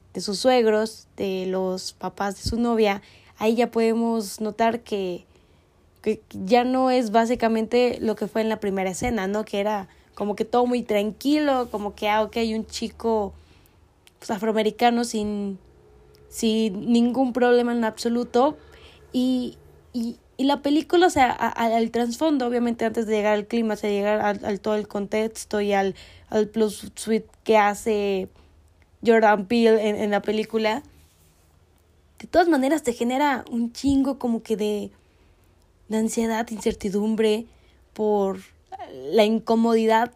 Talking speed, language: 155 wpm, Spanish